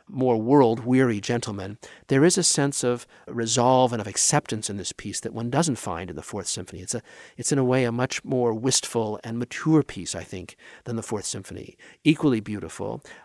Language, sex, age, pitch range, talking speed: English, male, 50-69, 110-155 Hz, 195 wpm